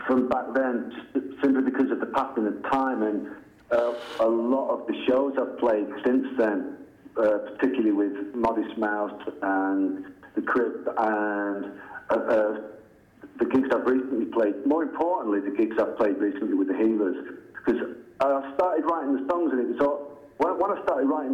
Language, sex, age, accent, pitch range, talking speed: English, male, 50-69, British, 100-135 Hz, 170 wpm